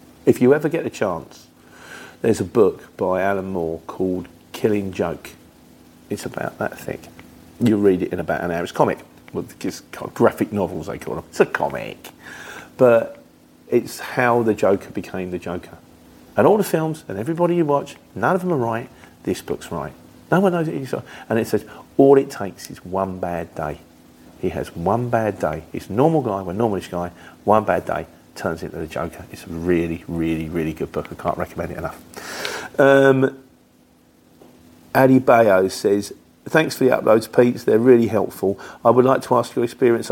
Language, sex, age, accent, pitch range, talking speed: English, male, 50-69, British, 85-120 Hz, 195 wpm